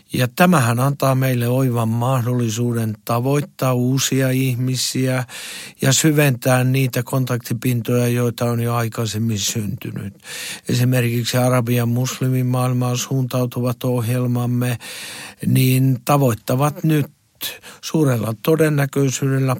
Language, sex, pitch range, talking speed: Finnish, male, 125-140 Hz, 85 wpm